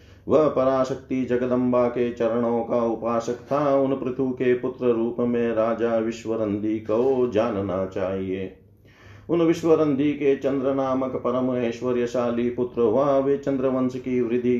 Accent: native